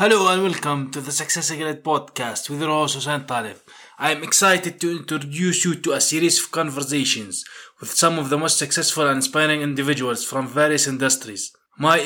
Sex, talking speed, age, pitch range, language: male, 180 wpm, 20-39, 140-155 Hz, English